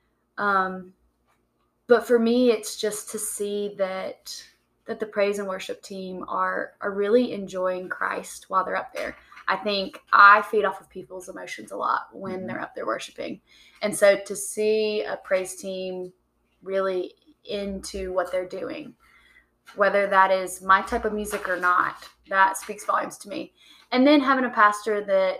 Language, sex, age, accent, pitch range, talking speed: English, female, 20-39, American, 185-215 Hz, 170 wpm